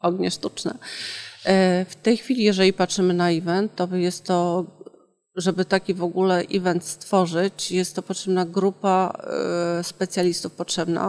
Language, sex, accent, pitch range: Polish, female, native, 180-200 Hz